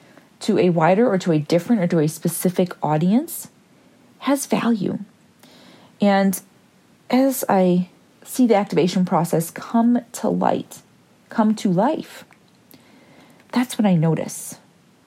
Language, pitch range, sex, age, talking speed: English, 180-225 Hz, female, 40-59, 125 wpm